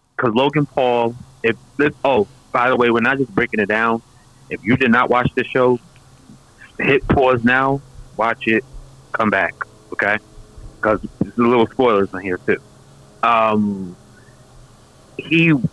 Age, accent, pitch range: 30-49, American, 105-130 Hz